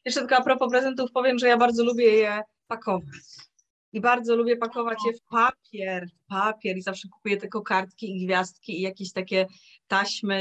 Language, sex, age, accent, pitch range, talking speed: Polish, female, 20-39, native, 190-245 Hz, 180 wpm